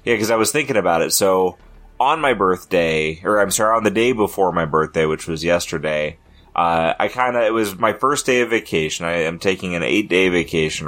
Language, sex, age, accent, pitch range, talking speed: English, male, 30-49, American, 80-105 Hz, 220 wpm